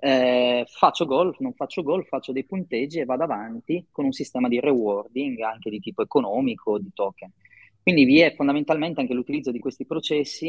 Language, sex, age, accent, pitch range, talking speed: Italian, male, 30-49, native, 125-170 Hz, 185 wpm